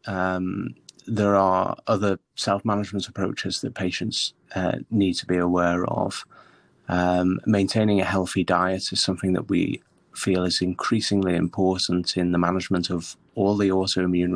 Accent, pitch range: British, 90-100 Hz